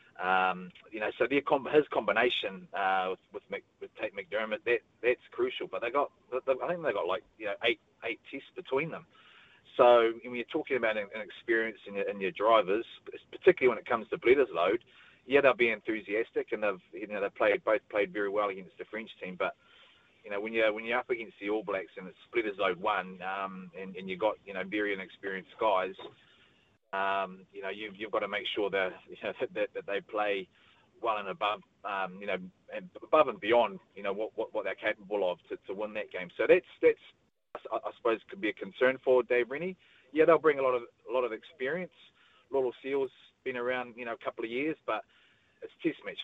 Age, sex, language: 30-49, male, English